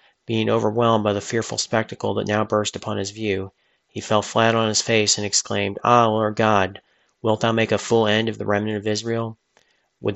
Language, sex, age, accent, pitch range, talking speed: English, male, 40-59, American, 105-115 Hz, 205 wpm